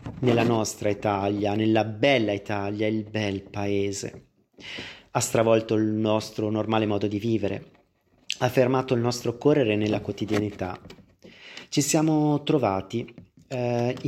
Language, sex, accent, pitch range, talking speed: English, male, Italian, 100-125 Hz, 120 wpm